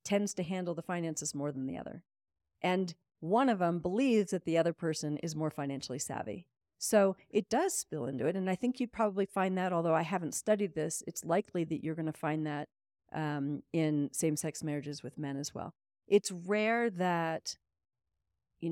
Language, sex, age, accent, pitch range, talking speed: English, female, 40-59, American, 155-220 Hz, 190 wpm